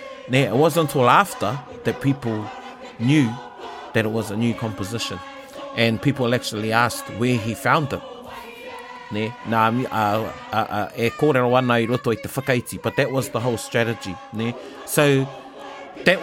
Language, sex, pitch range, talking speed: English, male, 110-140 Hz, 135 wpm